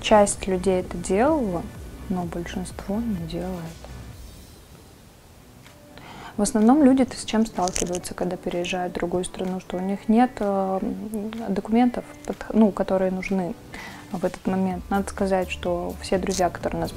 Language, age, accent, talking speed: Russian, 20-39, native, 140 wpm